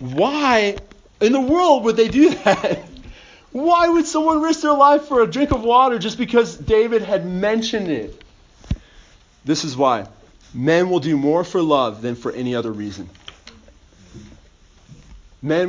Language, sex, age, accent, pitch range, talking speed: English, male, 40-59, American, 120-180 Hz, 155 wpm